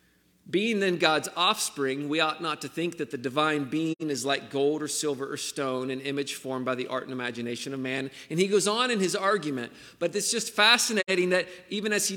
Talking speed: 220 wpm